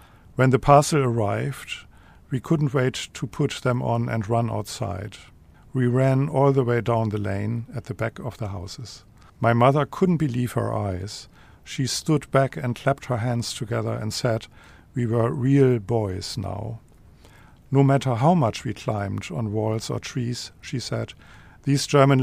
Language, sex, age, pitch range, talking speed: English, male, 50-69, 110-135 Hz, 170 wpm